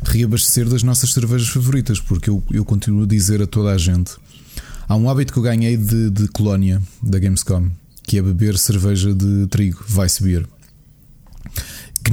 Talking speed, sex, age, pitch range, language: 175 wpm, male, 20-39, 95-120 Hz, Portuguese